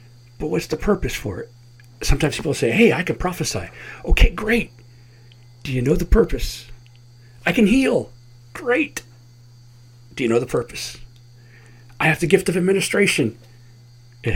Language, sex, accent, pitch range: English, male, American, 120-160 Hz